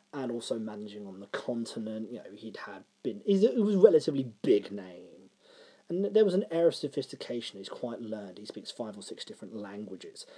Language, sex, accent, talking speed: English, male, British, 210 wpm